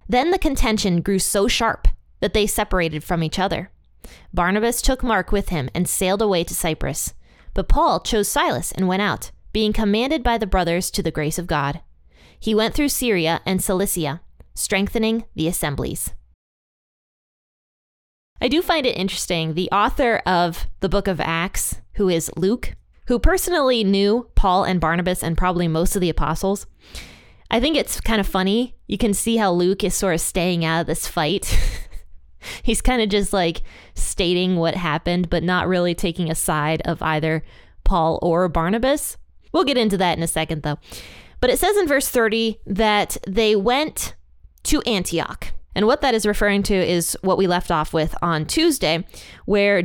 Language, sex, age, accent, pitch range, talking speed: English, female, 20-39, American, 165-220 Hz, 175 wpm